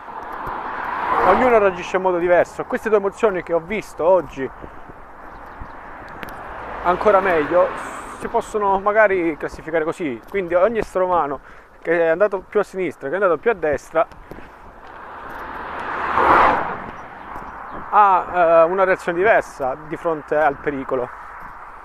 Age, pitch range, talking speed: 30-49, 150-190 Hz, 120 wpm